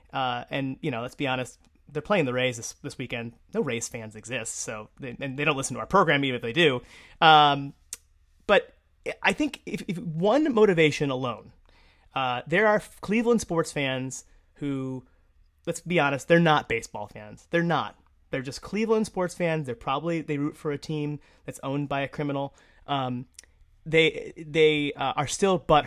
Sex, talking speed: male, 185 wpm